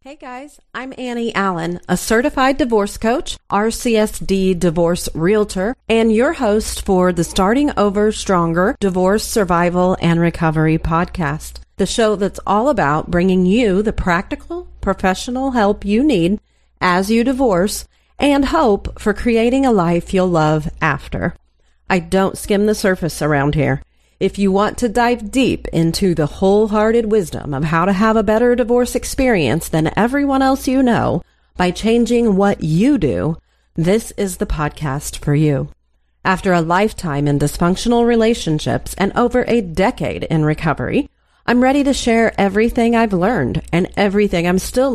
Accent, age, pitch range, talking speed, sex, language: American, 40-59, 170-230 Hz, 150 wpm, female, English